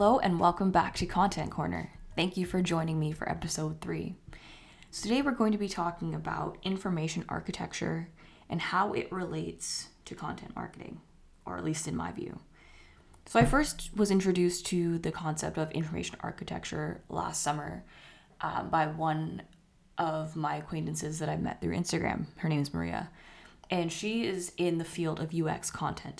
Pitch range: 155-175 Hz